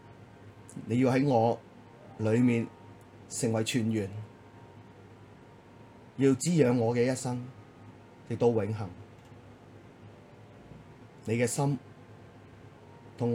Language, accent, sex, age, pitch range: Chinese, native, male, 30-49, 110-120 Hz